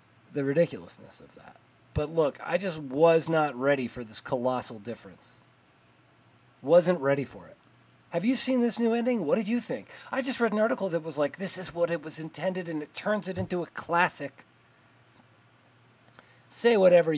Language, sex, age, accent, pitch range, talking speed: English, male, 30-49, American, 130-195 Hz, 180 wpm